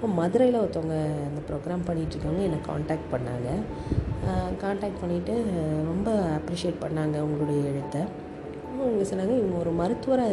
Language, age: Tamil, 30-49